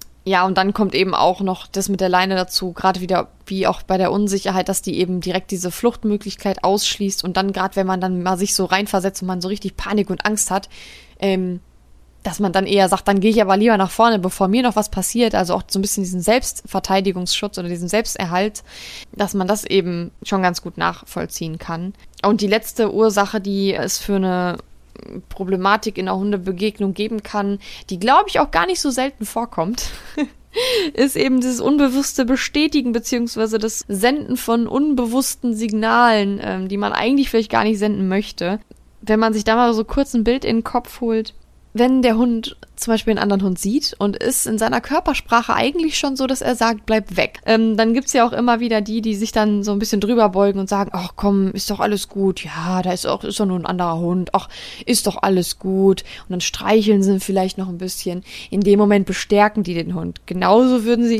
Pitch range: 190-225 Hz